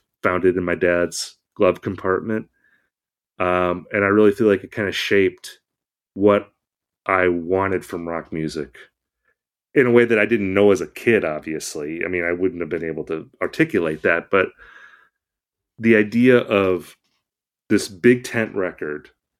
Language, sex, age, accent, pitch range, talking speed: English, male, 30-49, American, 90-115 Hz, 160 wpm